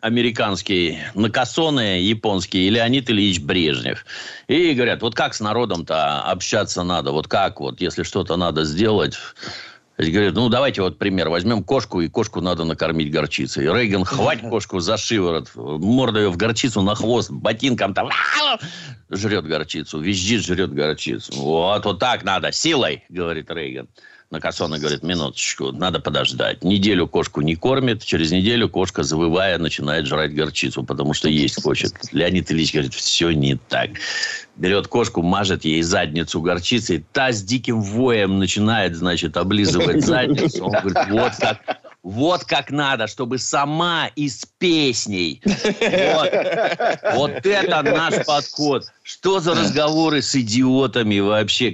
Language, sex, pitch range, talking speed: Russian, male, 90-130 Hz, 140 wpm